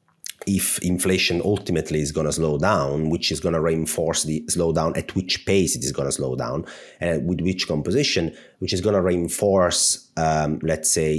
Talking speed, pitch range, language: 200 wpm, 80-100 Hz, English